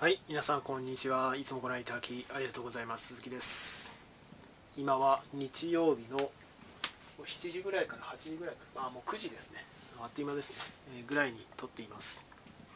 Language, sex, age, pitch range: Japanese, male, 20-39, 130-160 Hz